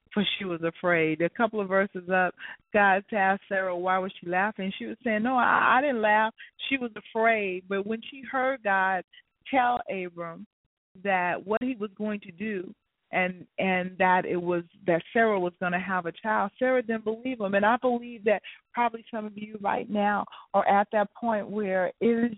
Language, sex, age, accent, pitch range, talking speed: English, female, 40-59, American, 165-220 Hz, 200 wpm